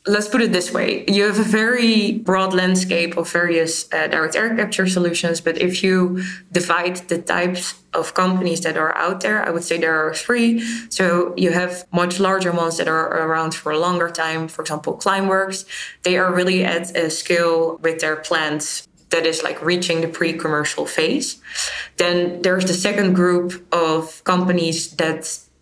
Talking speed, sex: 180 wpm, female